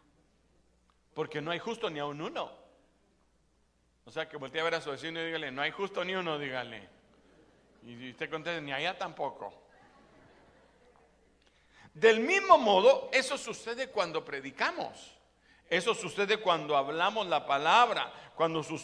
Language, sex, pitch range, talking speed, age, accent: Spanish, male, 145-205 Hz, 150 wpm, 60-79, Mexican